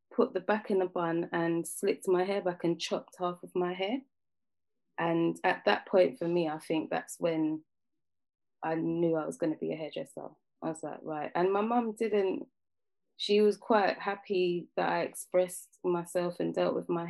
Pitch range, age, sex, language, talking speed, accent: 160-195 Hz, 20-39, female, English, 195 wpm, British